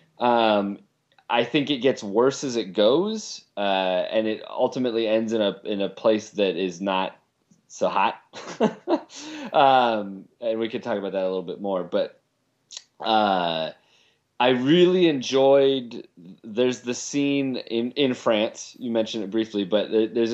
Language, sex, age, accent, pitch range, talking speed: English, male, 30-49, American, 100-125 Hz, 155 wpm